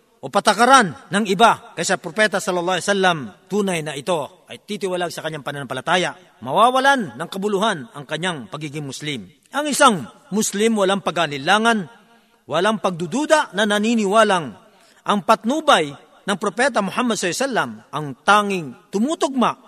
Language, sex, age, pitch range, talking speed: Filipino, male, 40-59, 175-230 Hz, 120 wpm